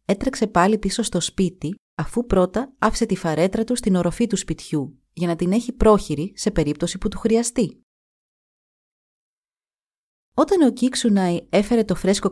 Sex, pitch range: female, 170-225 Hz